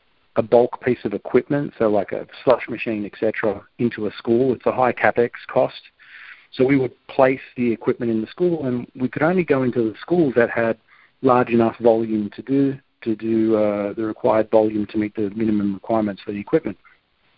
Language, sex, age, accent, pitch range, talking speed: English, male, 40-59, Australian, 105-130 Hz, 195 wpm